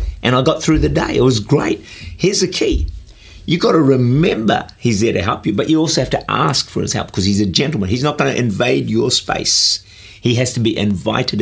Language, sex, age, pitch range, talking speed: English, male, 50-69, 100-135 Hz, 240 wpm